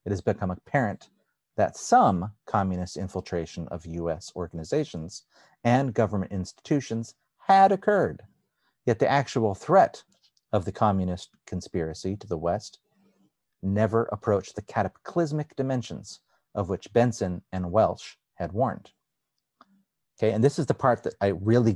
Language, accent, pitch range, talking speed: English, American, 90-120 Hz, 130 wpm